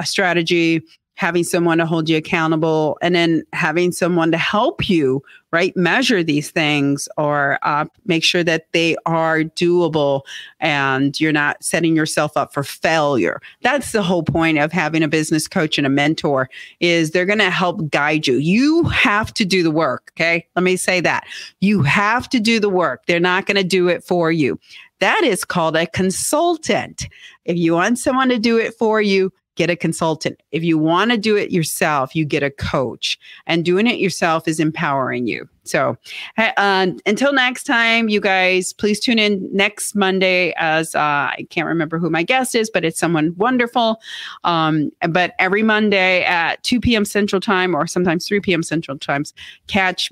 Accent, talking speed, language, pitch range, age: American, 180 wpm, English, 160-195 Hz, 40-59